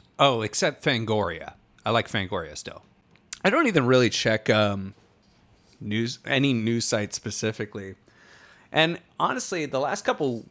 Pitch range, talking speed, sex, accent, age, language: 100-135 Hz, 130 wpm, male, American, 30-49, English